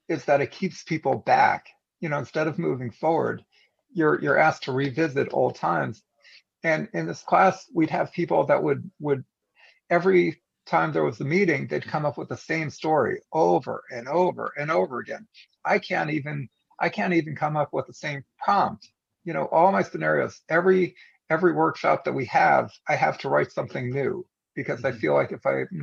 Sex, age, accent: male, 50-69, American